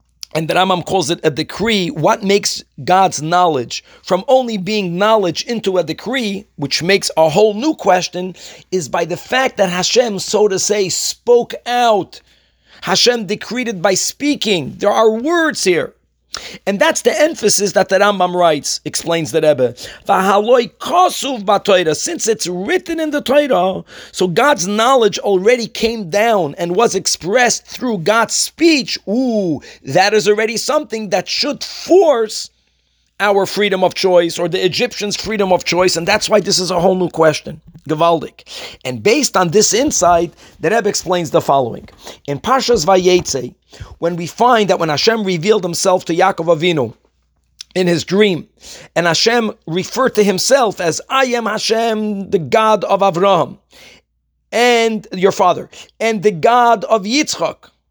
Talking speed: 155 wpm